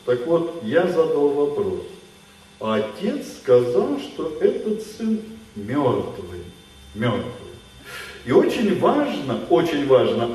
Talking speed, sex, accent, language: 100 wpm, male, native, Russian